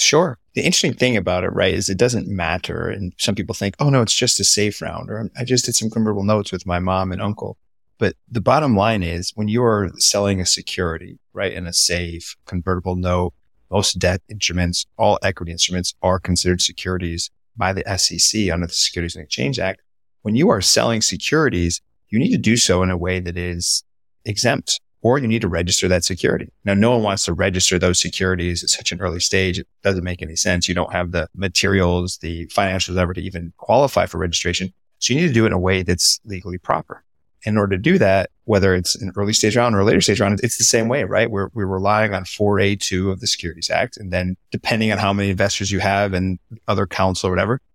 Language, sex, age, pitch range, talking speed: English, male, 30-49, 90-105 Hz, 225 wpm